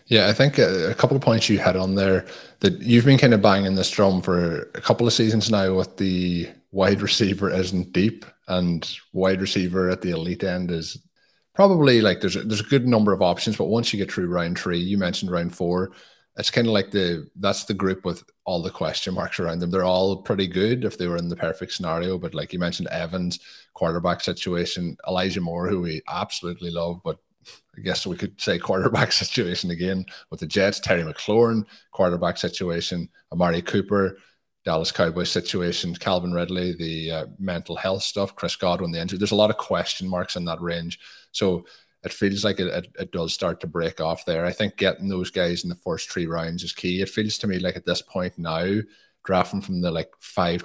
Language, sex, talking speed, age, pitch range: English, male, 210 wpm, 30-49, 85-100 Hz